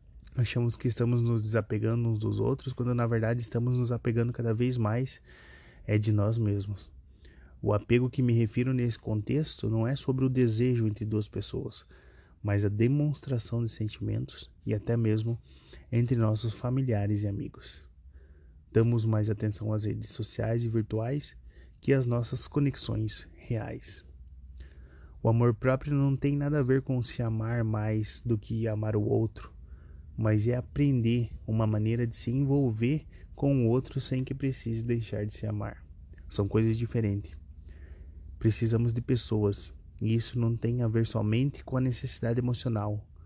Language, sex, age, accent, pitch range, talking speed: Portuguese, male, 20-39, Brazilian, 100-120 Hz, 160 wpm